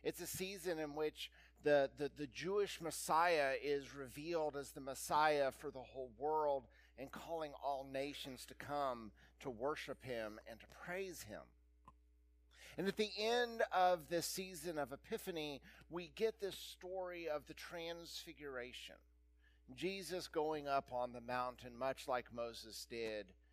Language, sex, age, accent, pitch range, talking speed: English, male, 50-69, American, 110-160 Hz, 145 wpm